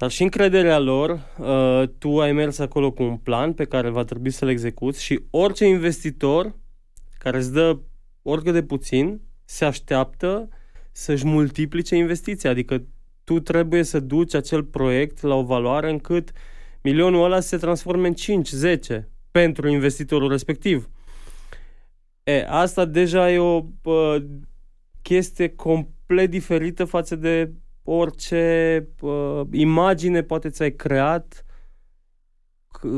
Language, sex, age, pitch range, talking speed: Romanian, male, 20-39, 125-165 Hz, 125 wpm